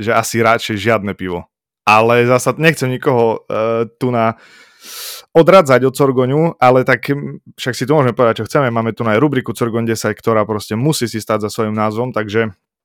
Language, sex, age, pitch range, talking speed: Slovak, male, 20-39, 105-125 Hz, 180 wpm